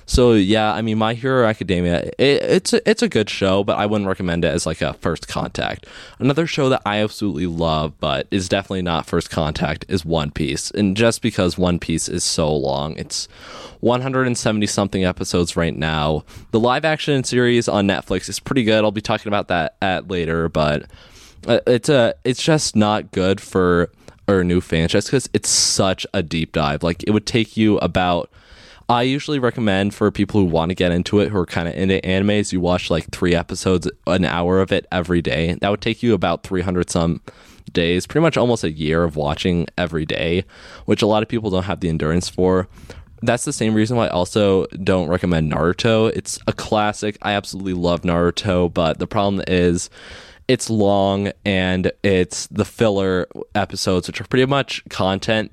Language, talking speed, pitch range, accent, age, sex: English, 190 wpm, 90-110 Hz, American, 20-39, male